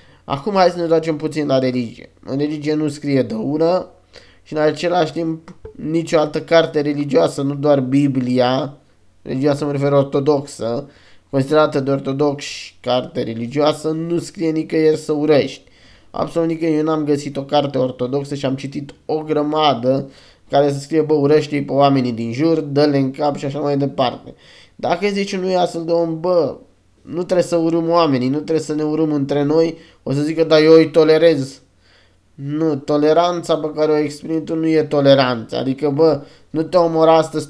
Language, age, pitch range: Romanian, 20-39, 135-160 Hz